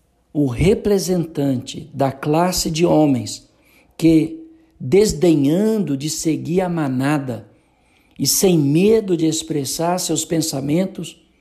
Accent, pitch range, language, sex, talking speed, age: Brazilian, 130-175 Hz, Portuguese, male, 100 wpm, 60-79